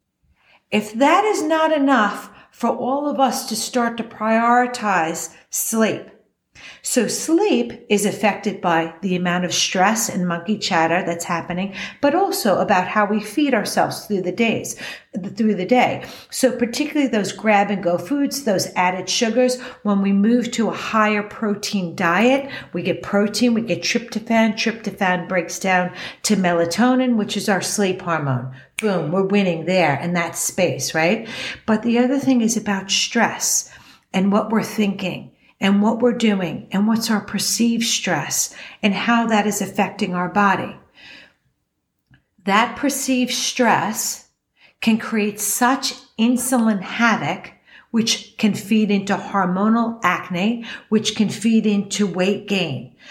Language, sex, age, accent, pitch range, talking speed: English, female, 50-69, American, 190-235 Hz, 145 wpm